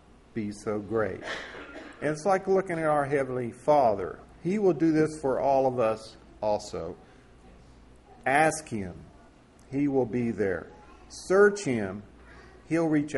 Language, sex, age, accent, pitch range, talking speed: English, male, 50-69, American, 115-155 Hz, 135 wpm